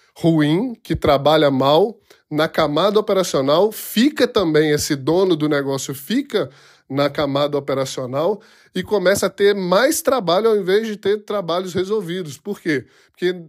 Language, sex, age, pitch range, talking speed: Portuguese, male, 20-39, 145-180 Hz, 140 wpm